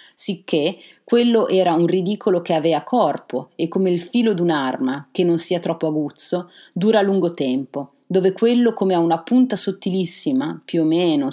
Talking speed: 165 wpm